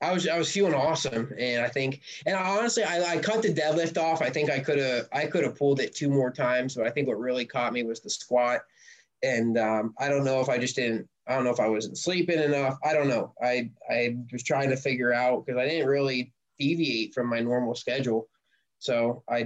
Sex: male